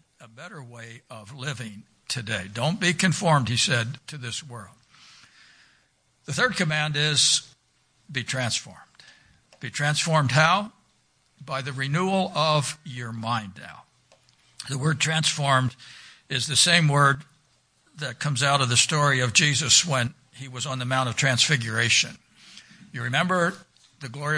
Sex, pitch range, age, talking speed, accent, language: male, 125-155 Hz, 60-79, 140 wpm, American, English